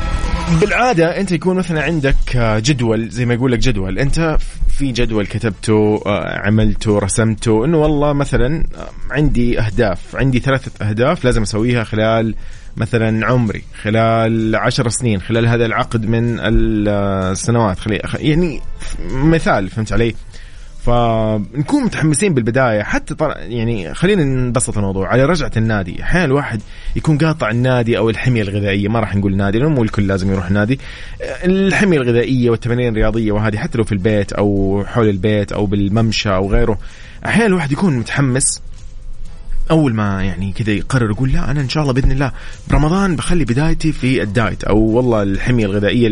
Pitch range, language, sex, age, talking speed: 105-135 Hz, Arabic, male, 30-49, 145 wpm